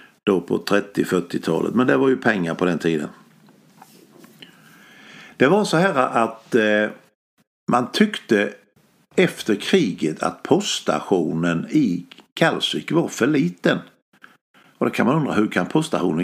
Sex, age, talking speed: male, 50-69, 135 wpm